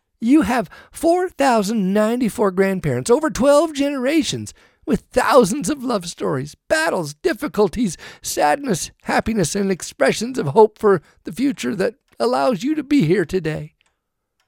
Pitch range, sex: 185-275 Hz, male